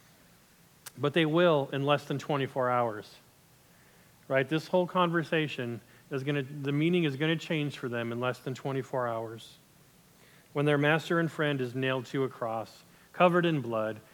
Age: 40-59